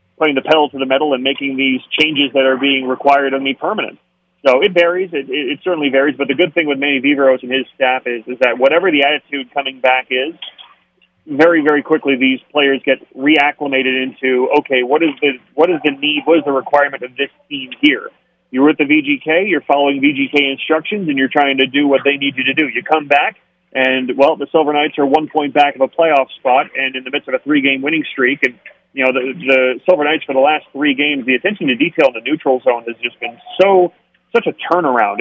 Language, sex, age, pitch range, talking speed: English, male, 30-49, 130-155 Hz, 235 wpm